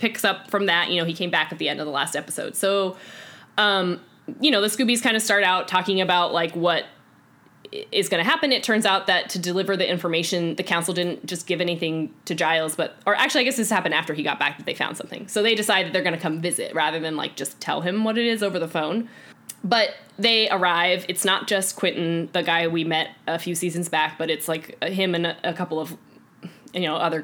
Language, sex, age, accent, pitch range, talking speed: English, female, 10-29, American, 170-210 Hz, 245 wpm